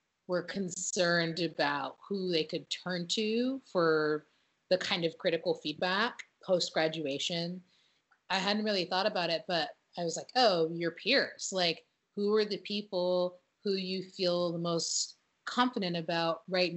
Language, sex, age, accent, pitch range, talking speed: English, female, 30-49, American, 165-195 Hz, 145 wpm